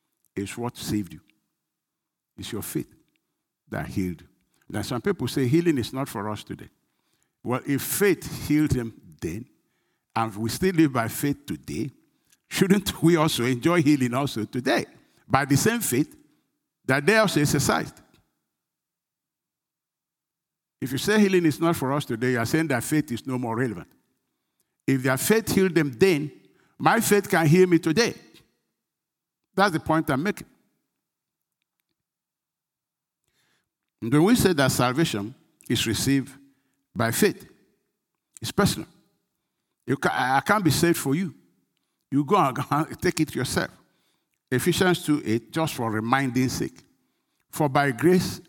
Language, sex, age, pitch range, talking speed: English, male, 60-79, 125-165 Hz, 145 wpm